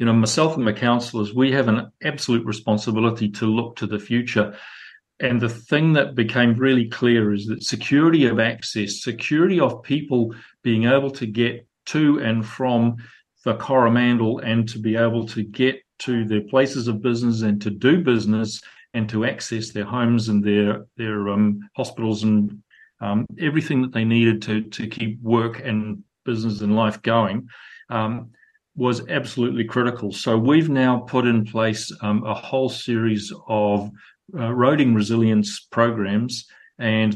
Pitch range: 110-125 Hz